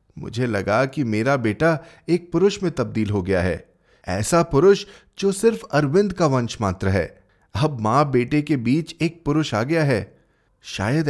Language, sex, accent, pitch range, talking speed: Hindi, male, native, 125-180 Hz, 175 wpm